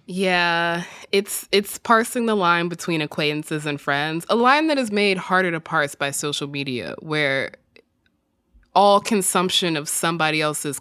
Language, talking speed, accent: English, 150 wpm, American